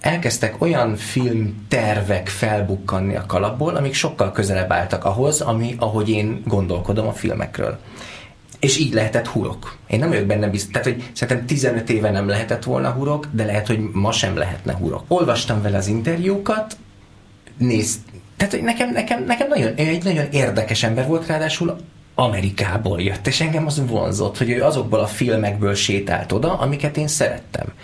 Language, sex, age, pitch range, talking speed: Hungarian, male, 20-39, 100-135 Hz, 160 wpm